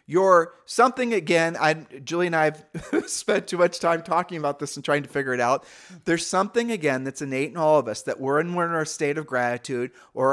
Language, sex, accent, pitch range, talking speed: English, male, American, 145-185 Hz, 225 wpm